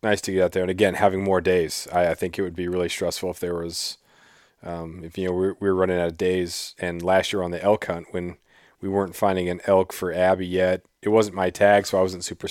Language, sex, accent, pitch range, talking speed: English, male, American, 90-105 Hz, 265 wpm